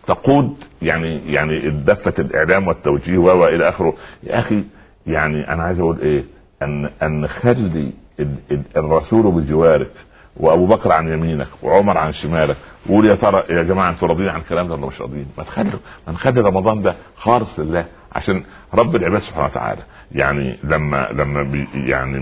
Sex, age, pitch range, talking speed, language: male, 60-79, 75-100 Hz, 155 wpm, Arabic